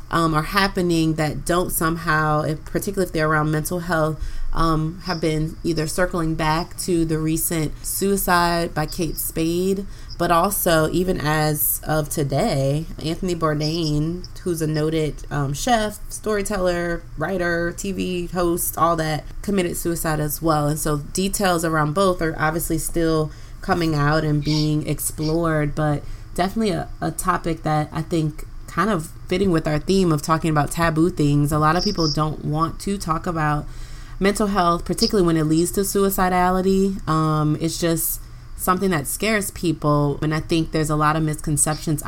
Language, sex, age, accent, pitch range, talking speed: English, female, 30-49, American, 150-175 Hz, 160 wpm